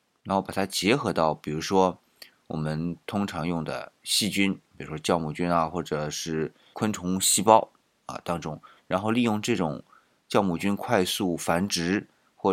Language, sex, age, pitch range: Chinese, male, 30-49, 80-100 Hz